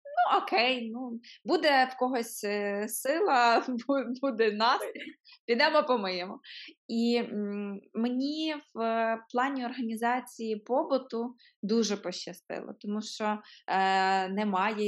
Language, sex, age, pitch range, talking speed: Ukrainian, female, 20-39, 195-240 Hz, 95 wpm